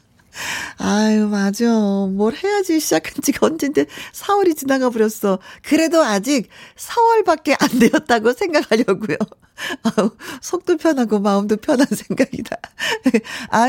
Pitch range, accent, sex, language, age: 215-335 Hz, native, female, Korean, 40-59